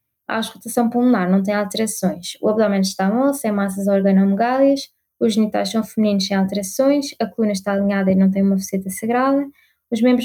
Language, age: Portuguese, 20-39